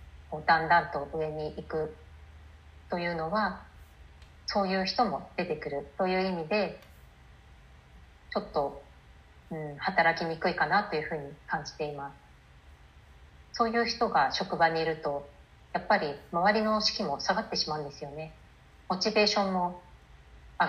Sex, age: female, 30-49